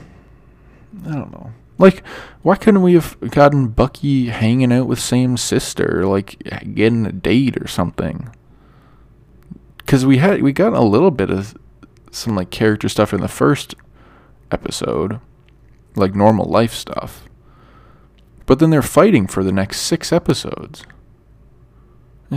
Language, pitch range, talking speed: English, 115-140 Hz, 135 wpm